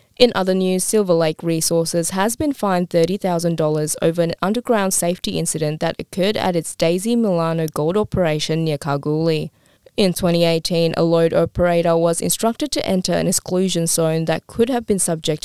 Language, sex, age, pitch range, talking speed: English, female, 20-39, 160-185 Hz, 165 wpm